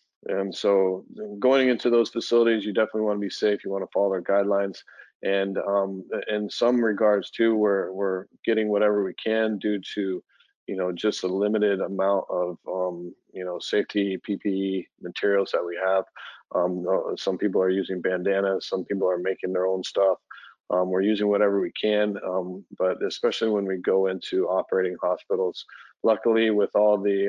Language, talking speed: English, 175 wpm